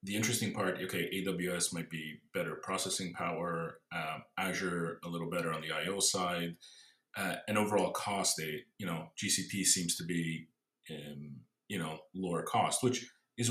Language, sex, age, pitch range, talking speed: English, male, 30-49, 90-125 Hz, 155 wpm